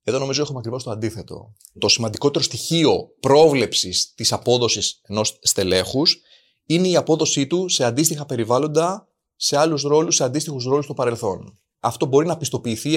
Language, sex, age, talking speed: Greek, male, 30-49, 155 wpm